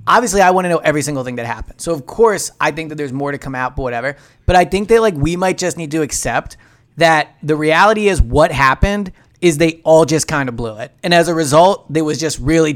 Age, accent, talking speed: 30-49, American, 265 wpm